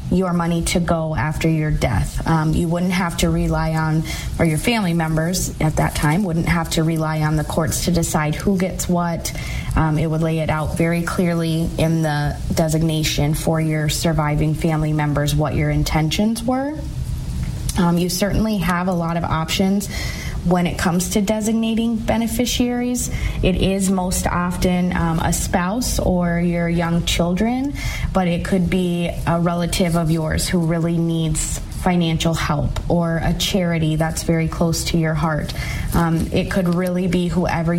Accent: American